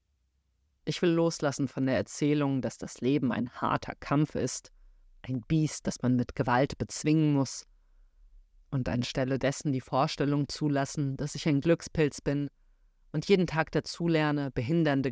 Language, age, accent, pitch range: German, 30-49, German, 120-145 Hz